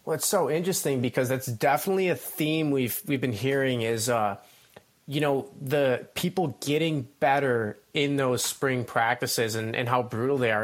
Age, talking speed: 30-49, 175 wpm